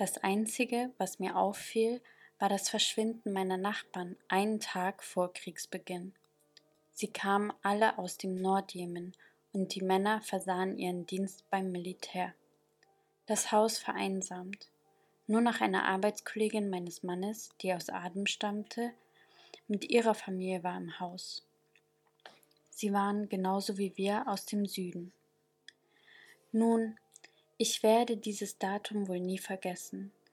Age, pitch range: 20-39, 185-220 Hz